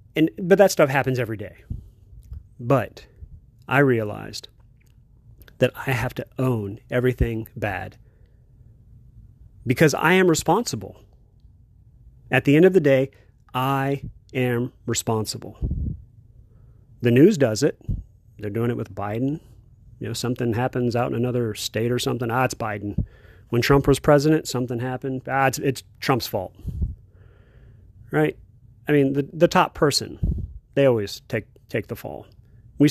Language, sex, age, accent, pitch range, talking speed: English, male, 40-59, American, 110-140 Hz, 140 wpm